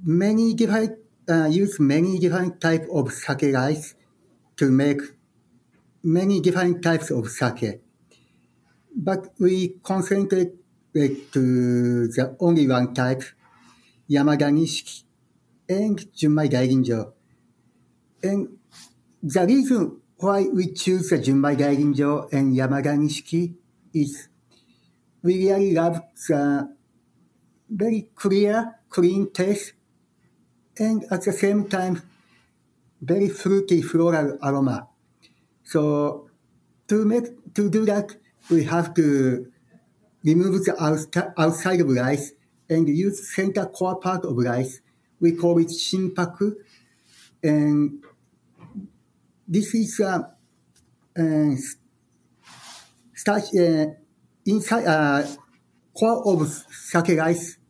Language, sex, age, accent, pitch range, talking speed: English, male, 60-79, Japanese, 140-190 Hz, 100 wpm